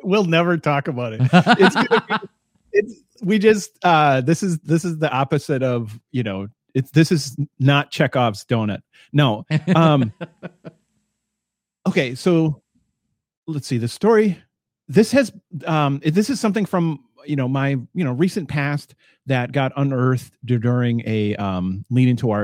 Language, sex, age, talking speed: English, male, 40-59, 150 wpm